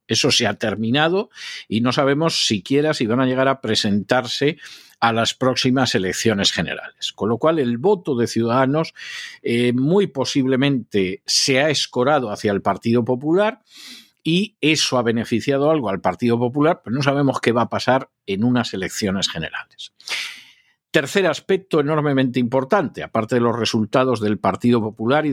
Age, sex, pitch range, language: 50-69, male, 115-150 Hz, Spanish